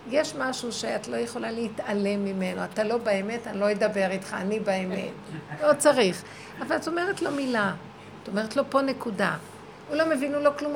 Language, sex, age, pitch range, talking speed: Hebrew, female, 60-79, 215-285 Hz, 190 wpm